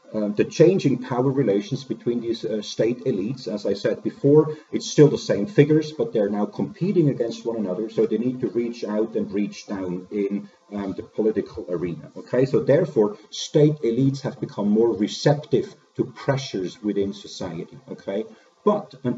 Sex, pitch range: male, 110-140 Hz